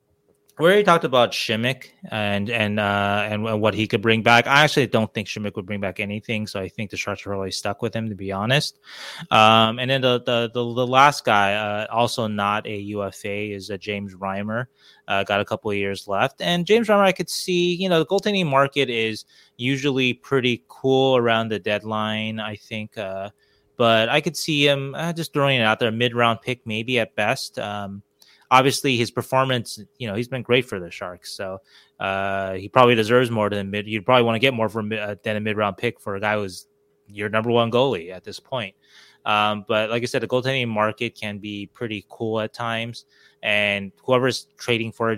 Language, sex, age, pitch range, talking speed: English, male, 20-39, 105-125 Hz, 215 wpm